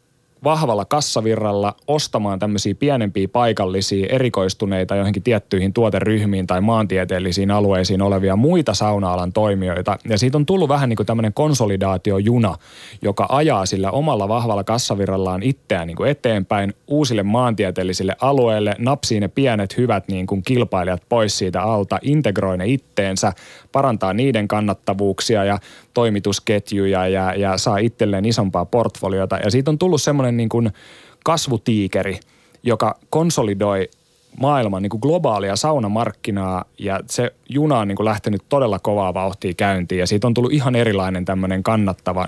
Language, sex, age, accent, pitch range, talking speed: Finnish, male, 20-39, native, 95-125 Hz, 135 wpm